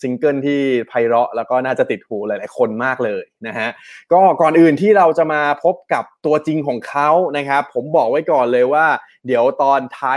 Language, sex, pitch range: Thai, male, 120-150 Hz